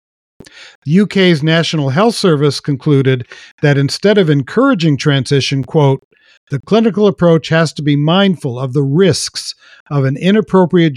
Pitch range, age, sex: 135-170 Hz, 50-69, male